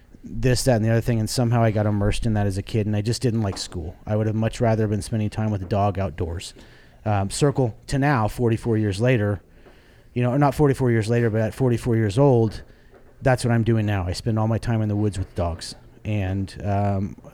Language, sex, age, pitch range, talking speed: English, male, 30-49, 105-120 Hz, 240 wpm